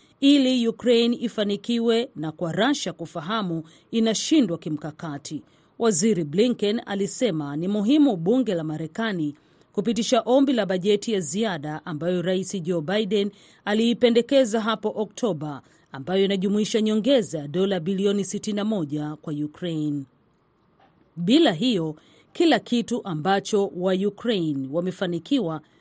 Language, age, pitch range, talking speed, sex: Swahili, 40-59, 165-230 Hz, 105 wpm, female